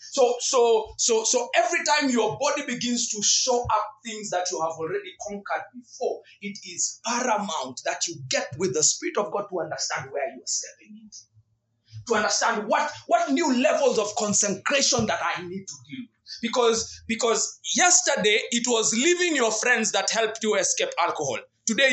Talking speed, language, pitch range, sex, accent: 170 wpm, English, 215-320 Hz, male, South African